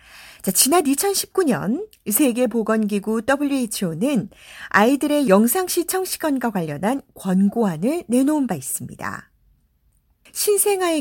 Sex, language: female, Korean